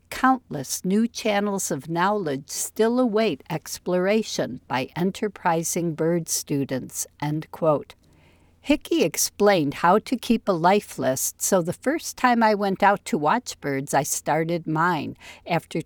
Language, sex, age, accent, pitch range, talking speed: English, female, 60-79, American, 160-215 Hz, 135 wpm